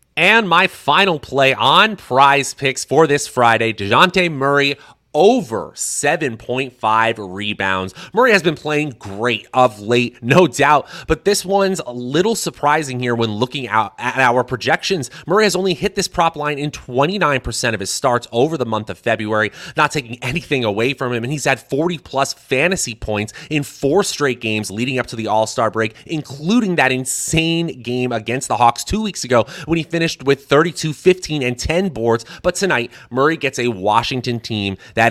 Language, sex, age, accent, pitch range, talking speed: English, male, 30-49, American, 110-150 Hz, 180 wpm